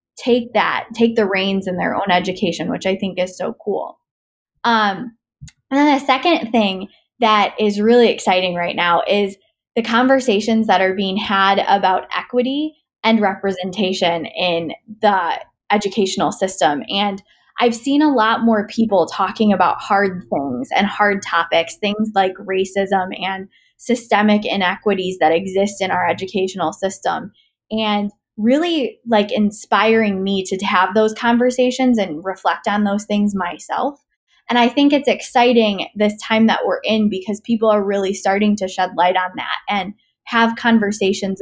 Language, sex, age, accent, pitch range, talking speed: English, female, 20-39, American, 190-225 Hz, 155 wpm